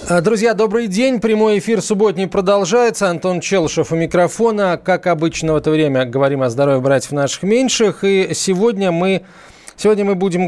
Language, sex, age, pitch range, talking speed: Russian, male, 20-39, 140-185 Hz, 165 wpm